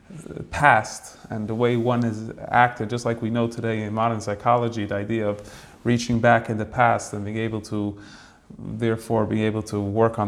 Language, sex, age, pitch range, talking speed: English, male, 30-49, 105-120 Hz, 195 wpm